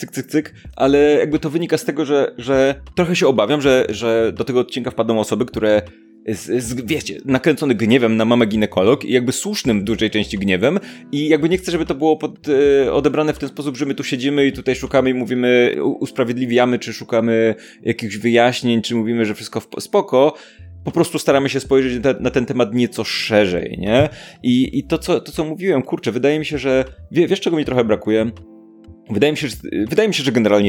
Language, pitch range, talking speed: Polish, 105-140 Hz, 215 wpm